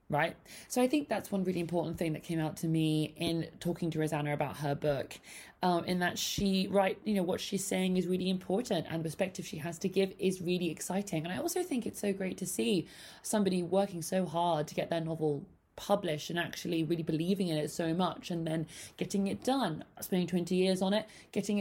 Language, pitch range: English, 160-195 Hz